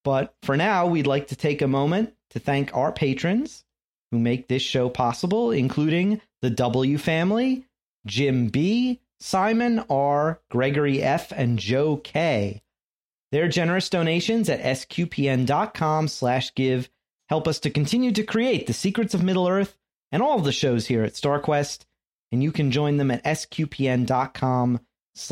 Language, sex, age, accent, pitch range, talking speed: English, male, 30-49, American, 125-180 Hz, 150 wpm